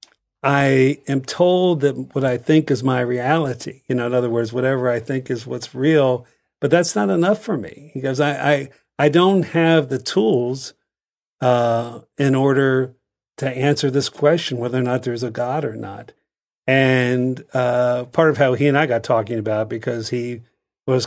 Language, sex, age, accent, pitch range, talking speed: English, male, 50-69, American, 115-135 Hz, 190 wpm